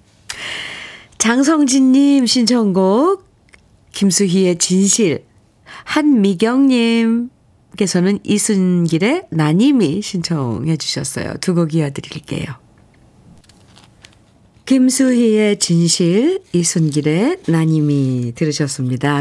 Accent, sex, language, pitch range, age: native, female, Korean, 160-235 Hz, 40-59